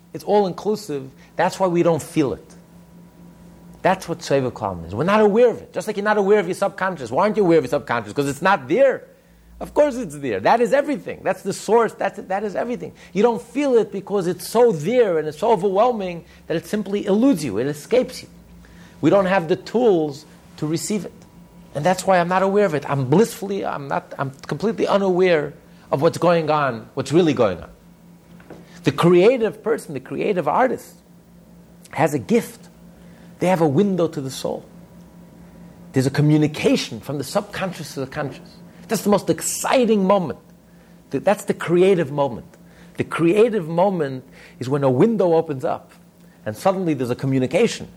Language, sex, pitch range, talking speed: English, male, 155-200 Hz, 190 wpm